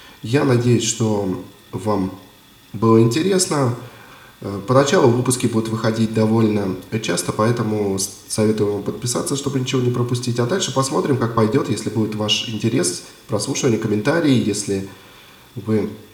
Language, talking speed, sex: Russian, 125 wpm, male